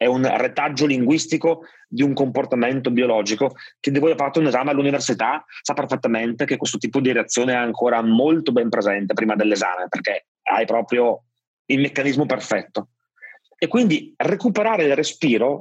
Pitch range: 125-185 Hz